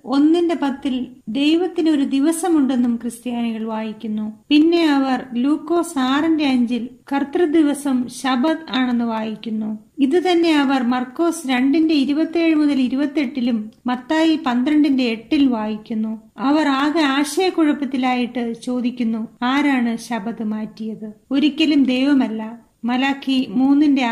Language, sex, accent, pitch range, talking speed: Malayalam, female, native, 230-280 Hz, 95 wpm